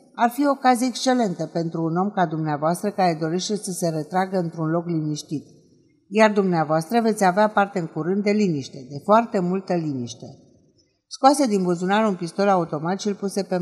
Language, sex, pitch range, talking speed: Romanian, female, 165-210 Hz, 175 wpm